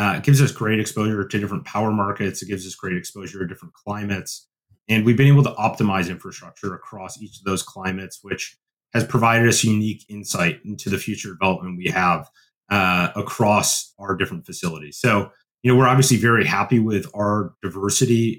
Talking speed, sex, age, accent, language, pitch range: 185 wpm, male, 30-49, American, English, 100-125 Hz